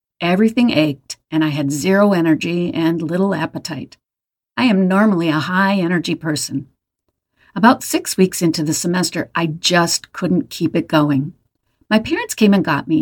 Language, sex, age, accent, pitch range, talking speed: English, female, 50-69, American, 160-230 Hz, 155 wpm